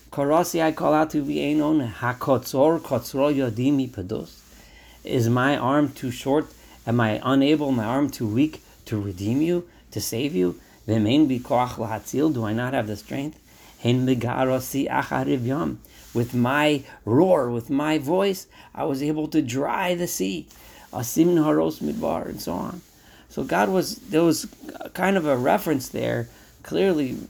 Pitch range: 110-150 Hz